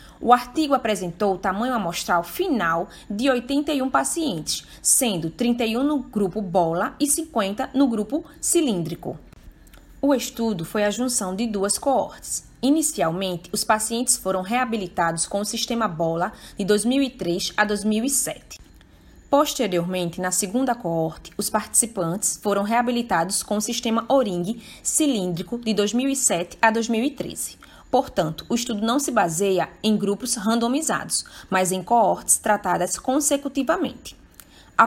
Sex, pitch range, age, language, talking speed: female, 180-250 Hz, 20-39, English, 125 wpm